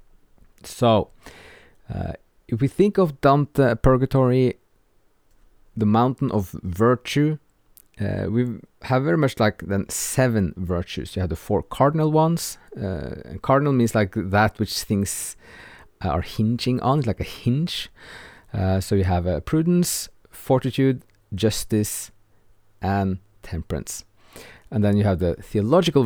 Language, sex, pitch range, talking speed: English, male, 100-130 Hz, 130 wpm